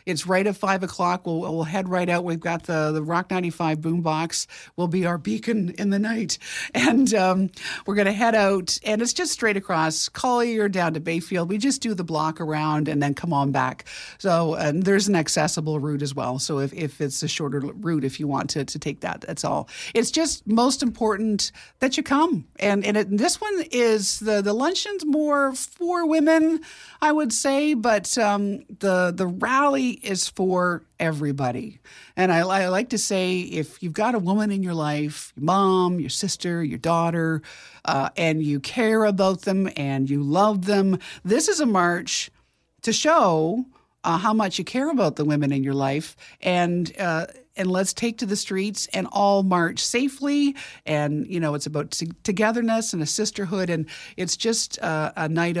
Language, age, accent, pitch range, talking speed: English, 50-69, American, 160-220 Hz, 190 wpm